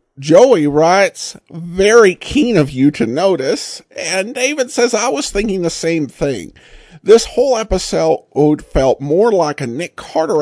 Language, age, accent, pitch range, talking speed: English, 50-69, American, 130-205 Hz, 150 wpm